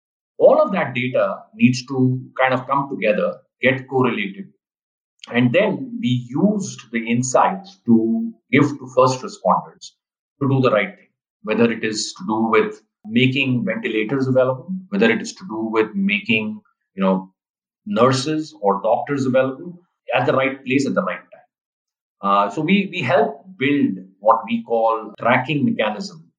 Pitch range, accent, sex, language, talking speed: 115-175 Hz, Indian, male, English, 150 wpm